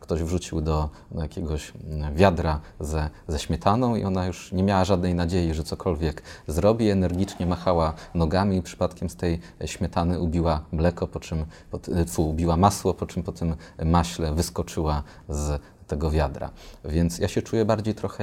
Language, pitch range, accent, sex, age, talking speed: Polish, 85-100 Hz, native, male, 30-49, 160 wpm